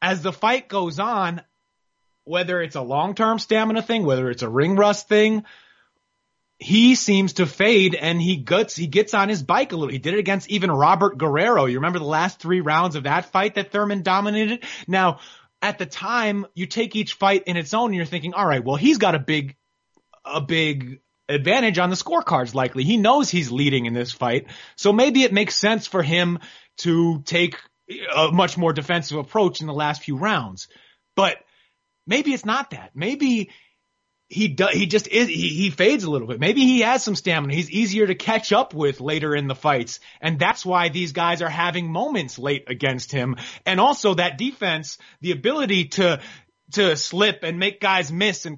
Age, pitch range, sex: 30-49, 155-205 Hz, male